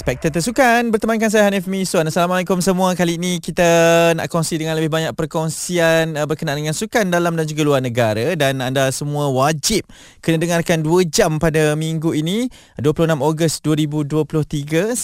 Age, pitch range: 20-39, 125-165 Hz